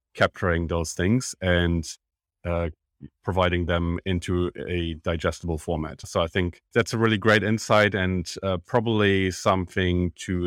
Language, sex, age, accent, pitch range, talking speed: English, male, 30-49, German, 85-95 Hz, 140 wpm